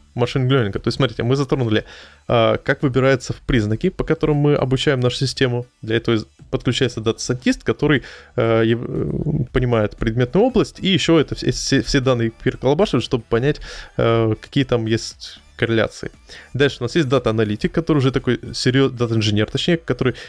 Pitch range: 115-135 Hz